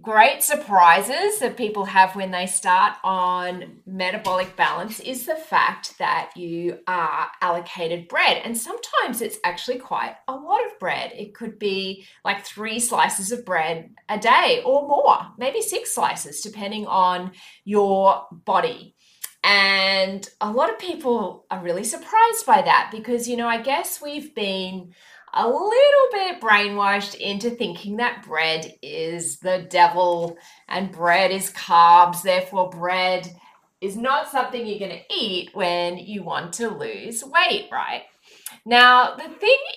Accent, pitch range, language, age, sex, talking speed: Australian, 180-260 Hz, English, 30-49, female, 150 wpm